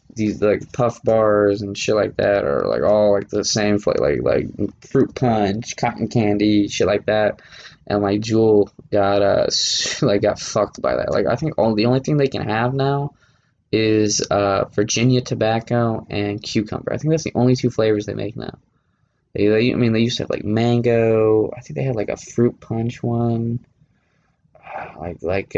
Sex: male